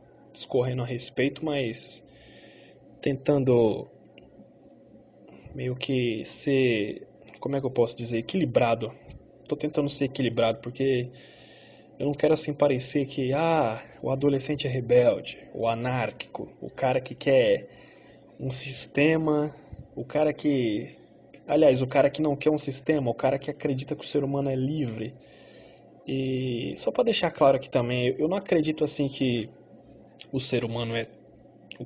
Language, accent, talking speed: Portuguese, Brazilian, 145 wpm